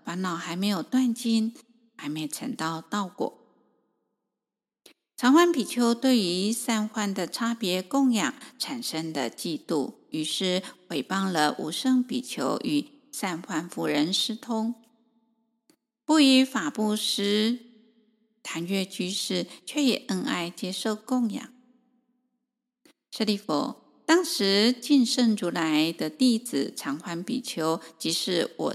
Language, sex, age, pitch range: Chinese, female, 50-69, 195-260 Hz